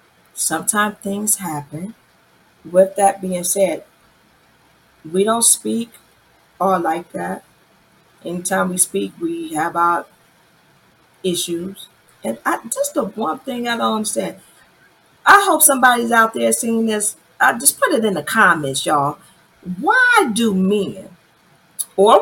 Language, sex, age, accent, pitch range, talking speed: English, female, 40-59, American, 170-225 Hz, 125 wpm